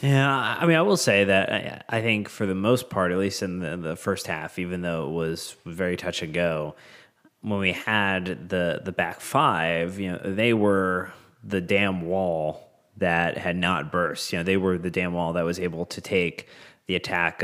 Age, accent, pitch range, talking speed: 20-39, American, 85-100 Hz, 210 wpm